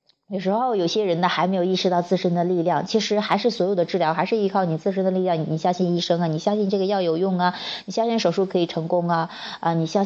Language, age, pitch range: Chinese, 20-39, 160-195 Hz